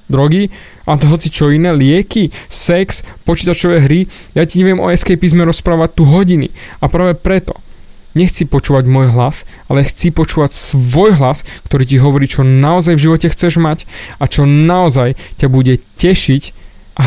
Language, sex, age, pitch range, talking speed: Slovak, male, 20-39, 130-170 Hz, 165 wpm